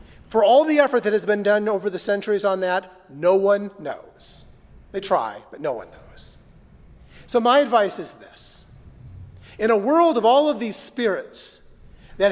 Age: 40-59